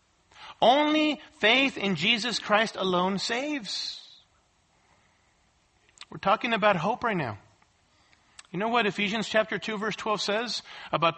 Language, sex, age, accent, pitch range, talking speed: English, male, 40-59, American, 180-225 Hz, 125 wpm